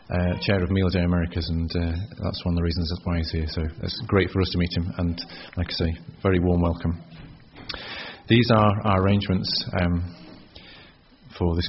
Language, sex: English, male